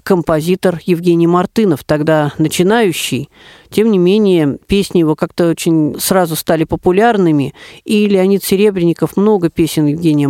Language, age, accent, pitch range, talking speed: Russian, 40-59, native, 155-185 Hz, 120 wpm